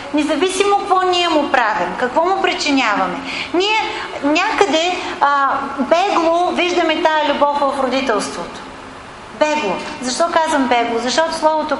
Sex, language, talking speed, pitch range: female, English, 115 wpm, 255-335 Hz